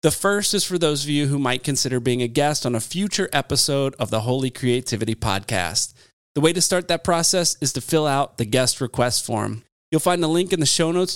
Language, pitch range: English, 125-165 Hz